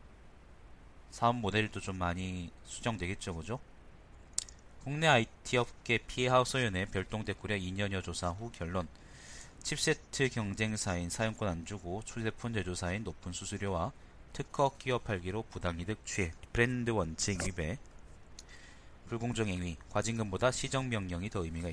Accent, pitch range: native, 90-120 Hz